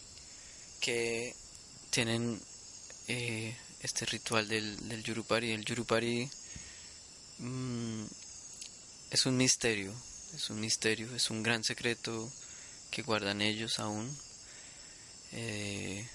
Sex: male